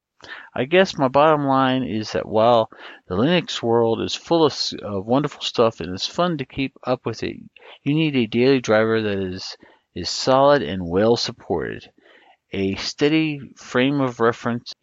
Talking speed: 165 wpm